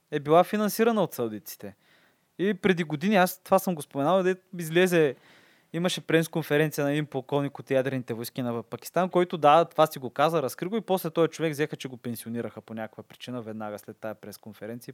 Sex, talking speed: male, 195 wpm